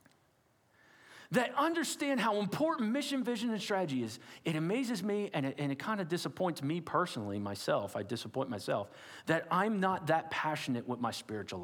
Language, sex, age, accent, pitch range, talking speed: English, male, 40-59, American, 105-170 Hz, 170 wpm